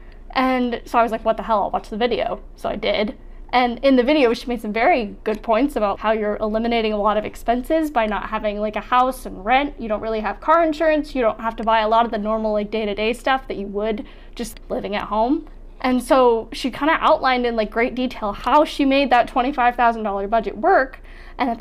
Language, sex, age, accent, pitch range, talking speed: English, female, 20-39, American, 225-305 Hz, 240 wpm